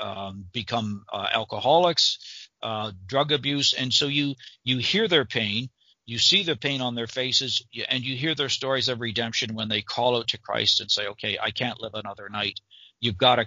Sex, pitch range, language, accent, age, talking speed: male, 110-130 Hz, English, American, 50-69, 205 wpm